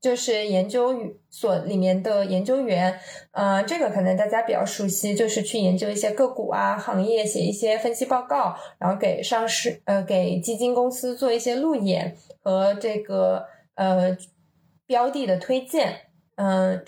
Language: Chinese